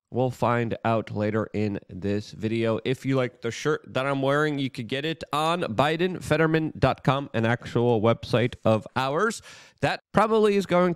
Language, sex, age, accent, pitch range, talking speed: English, male, 30-49, American, 130-205 Hz, 165 wpm